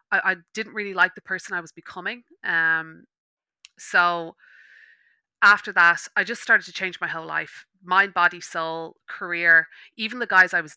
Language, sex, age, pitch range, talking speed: English, female, 30-49, 175-215 Hz, 165 wpm